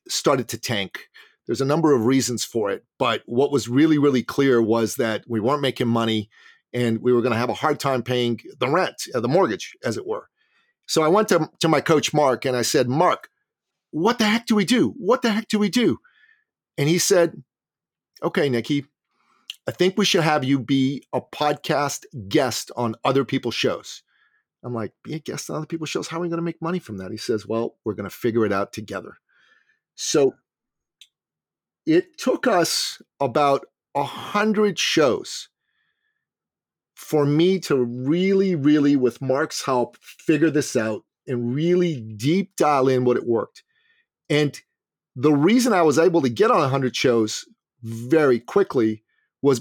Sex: male